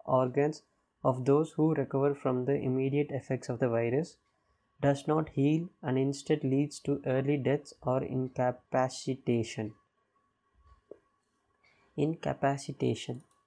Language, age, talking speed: Tamil, 20-39, 105 wpm